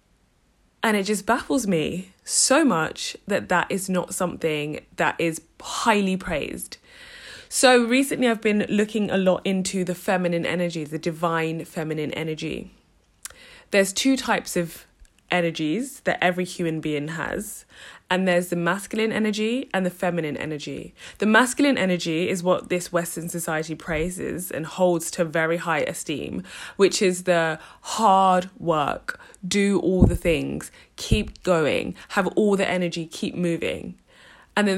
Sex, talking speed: female, 145 wpm